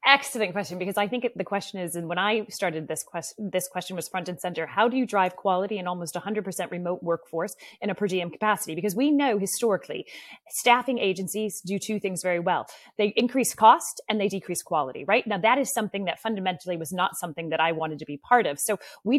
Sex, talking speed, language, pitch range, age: female, 225 wpm, English, 180-230 Hz, 30-49